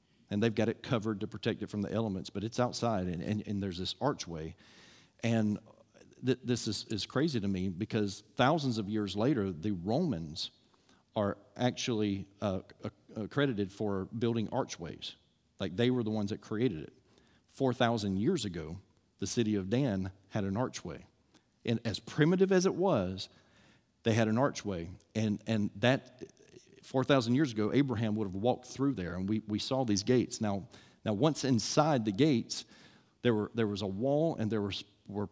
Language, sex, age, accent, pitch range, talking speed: English, male, 40-59, American, 100-125 Hz, 180 wpm